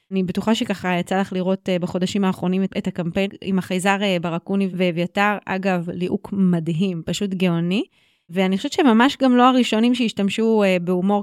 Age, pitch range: 30-49, 185-225 Hz